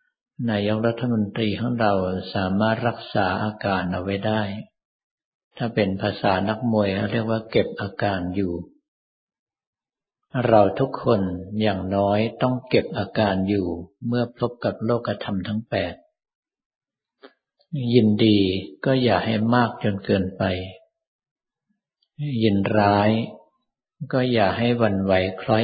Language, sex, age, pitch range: Thai, male, 60-79, 100-120 Hz